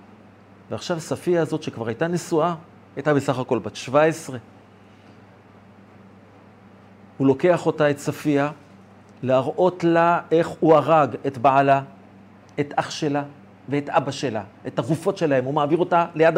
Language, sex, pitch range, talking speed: Hebrew, male, 110-160 Hz, 130 wpm